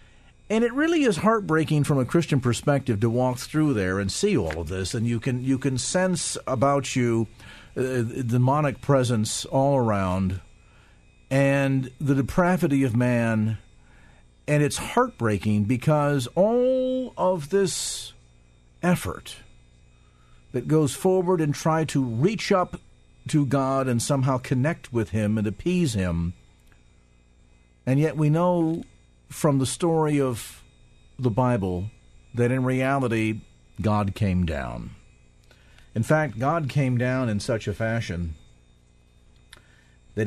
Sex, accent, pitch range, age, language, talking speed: male, American, 95-145 Hz, 50-69, English, 135 wpm